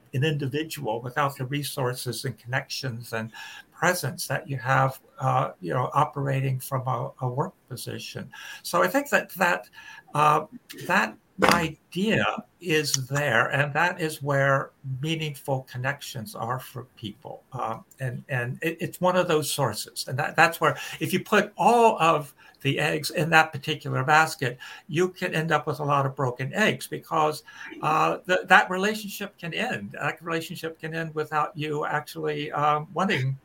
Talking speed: 160 wpm